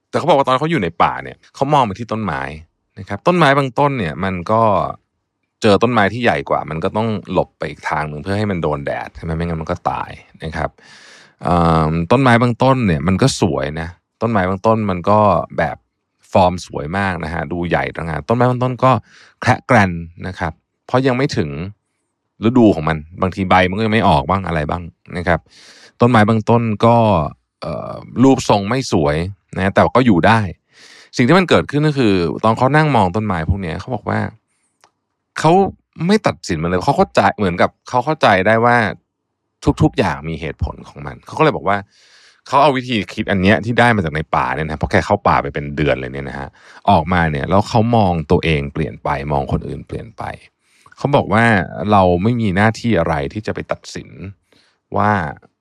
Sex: male